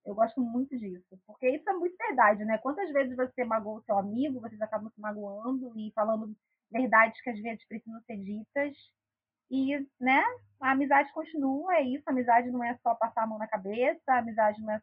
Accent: Brazilian